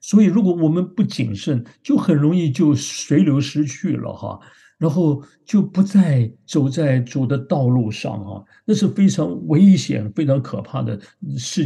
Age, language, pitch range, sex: 50-69, Chinese, 120-160 Hz, male